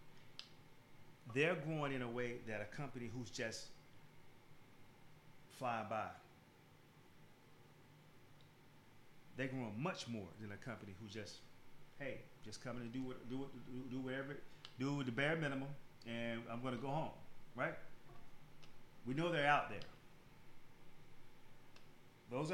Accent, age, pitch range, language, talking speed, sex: American, 40-59, 115-140 Hz, English, 115 wpm, male